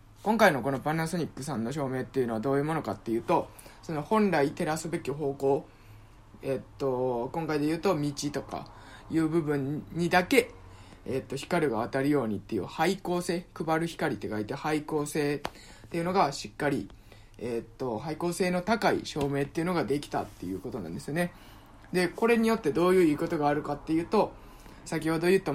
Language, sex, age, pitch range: Japanese, male, 20-39, 135-175 Hz